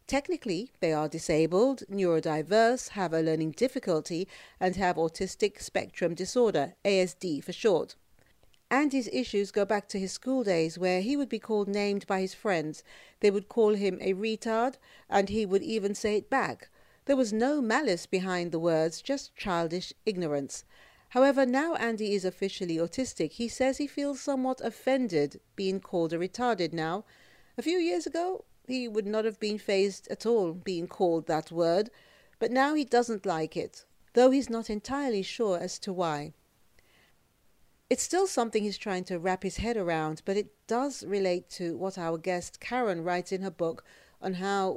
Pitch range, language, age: 180-235 Hz, English, 50-69